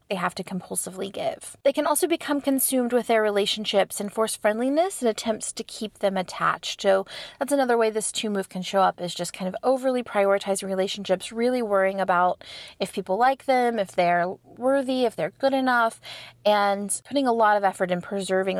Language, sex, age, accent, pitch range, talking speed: English, female, 30-49, American, 195-255 Hz, 195 wpm